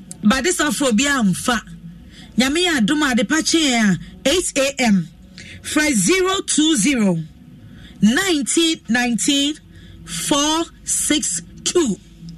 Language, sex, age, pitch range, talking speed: English, female, 40-59, 190-290 Hz, 65 wpm